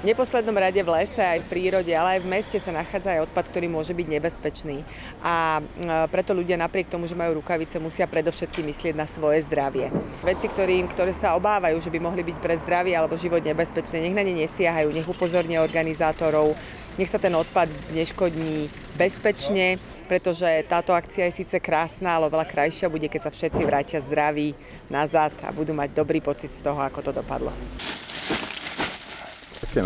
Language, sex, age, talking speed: Slovak, female, 30-49, 175 wpm